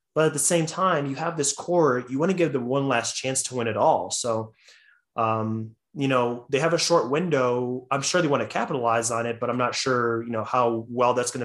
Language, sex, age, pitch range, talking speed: English, male, 20-39, 110-135 Hz, 250 wpm